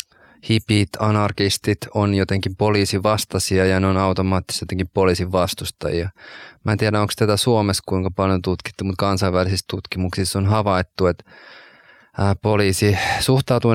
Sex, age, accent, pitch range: male, 20-39, native, 90-105 Hz